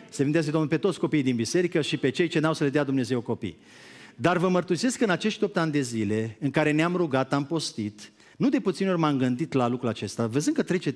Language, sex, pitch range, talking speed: Romanian, male, 145-225 Hz, 250 wpm